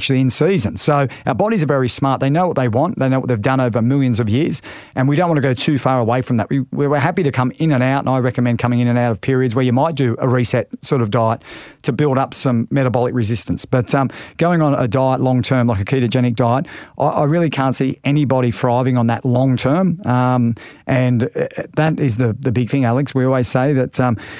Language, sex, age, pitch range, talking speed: English, male, 40-59, 125-140 Hz, 255 wpm